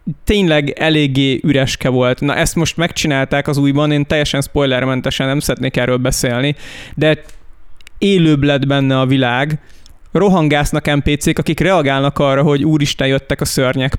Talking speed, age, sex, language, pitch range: 140 wpm, 20-39, male, Hungarian, 135-155 Hz